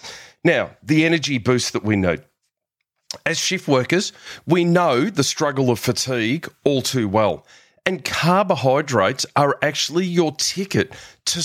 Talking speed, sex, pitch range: 135 wpm, male, 125-165 Hz